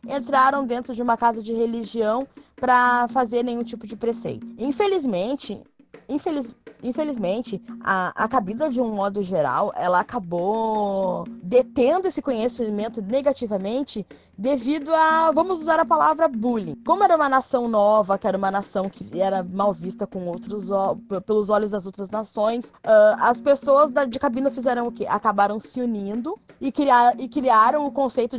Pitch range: 205-260 Hz